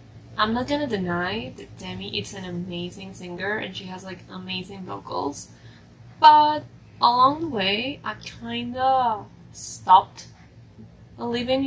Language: Japanese